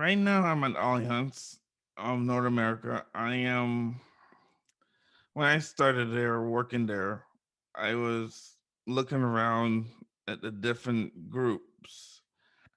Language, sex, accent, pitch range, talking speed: English, male, American, 110-130 Hz, 115 wpm